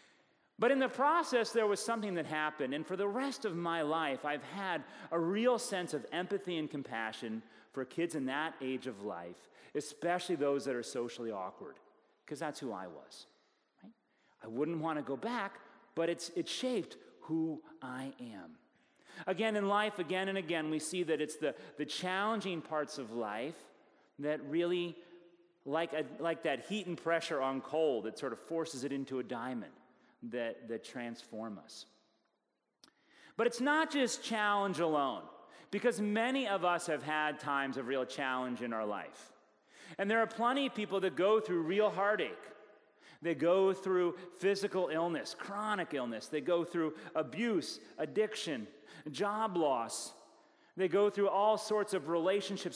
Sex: male